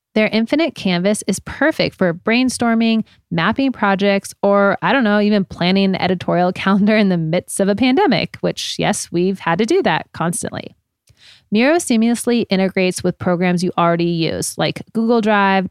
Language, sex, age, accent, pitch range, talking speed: English, female, 30-49, American, 175-220 Hz, 165 wpm